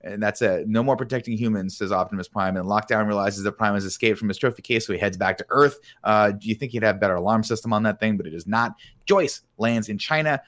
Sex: male